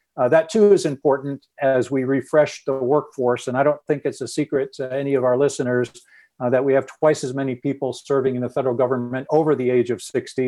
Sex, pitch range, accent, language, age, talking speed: male, 130-150 Hz, American, English, 50-69, 230 wpm